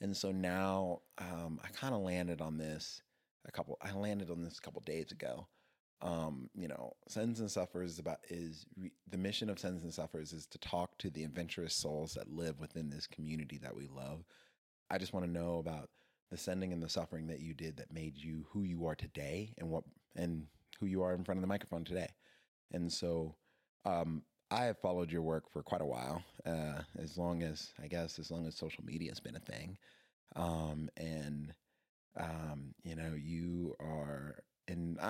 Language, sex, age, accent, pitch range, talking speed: English, male, 30-49, American, 75-90 Hz, 200 wpm